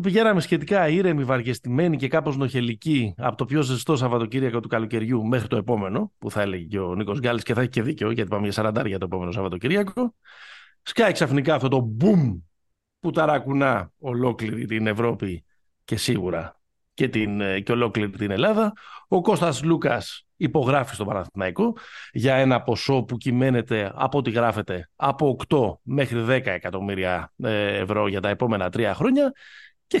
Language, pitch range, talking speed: Greek, 105-145 Hz, 160 wpm